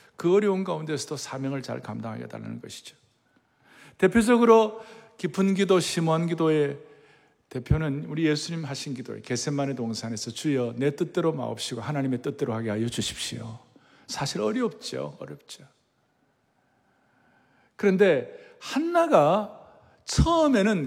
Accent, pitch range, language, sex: native, 130-180 Hz, Korean, male